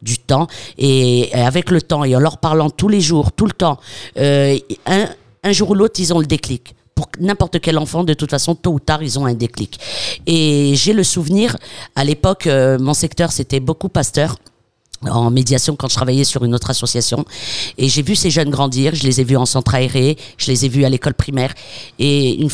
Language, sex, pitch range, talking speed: French, female, 130-165 Hz, 220 wpm